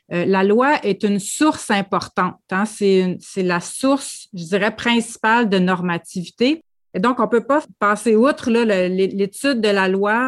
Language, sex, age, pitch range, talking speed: French, female, 30-49, 185-230 Hz, 185 wpm